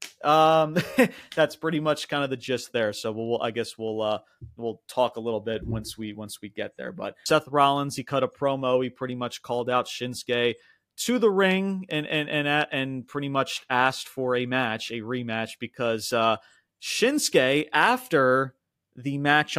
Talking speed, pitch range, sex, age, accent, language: 185 wpm, 115-145 Hz, male, 30-49, American, English